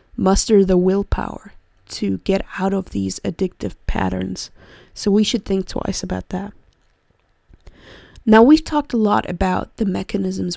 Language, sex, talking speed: English, female, 140 wpm